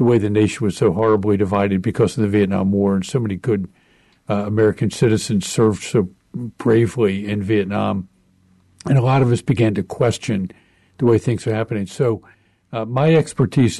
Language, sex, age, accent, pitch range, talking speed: English, male, 50-69, American, 105-125 Hz, 185 wpm